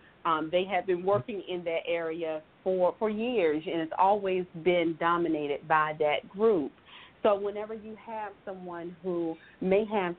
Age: 40-59